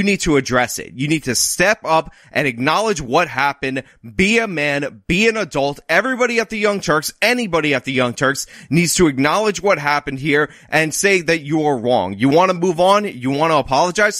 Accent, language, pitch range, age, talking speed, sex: American, English, 130-180 Hz, 20-39, 215 wpm, male